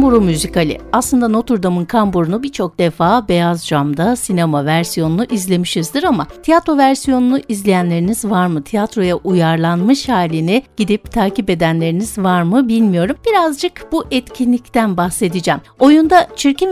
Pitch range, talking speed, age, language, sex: 185-270 Hz, 120 wpm, 60-79, Turkish, female